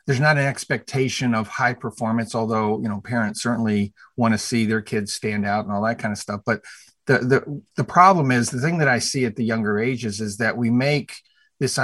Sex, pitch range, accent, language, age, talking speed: male, 110-125 Hz, American, English, 50-69, 230 wpm